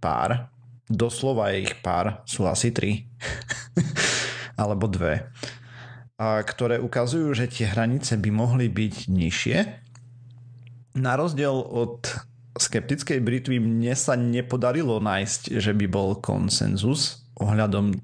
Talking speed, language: 110 wpm, Slovak